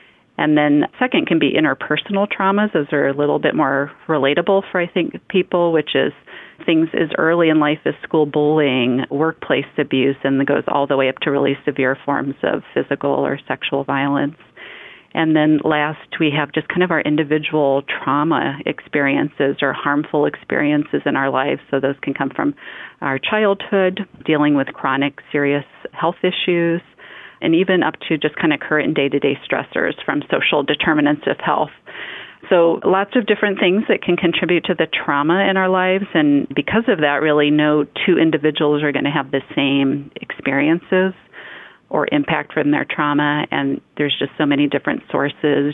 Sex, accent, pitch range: female, American, 140-170 Hz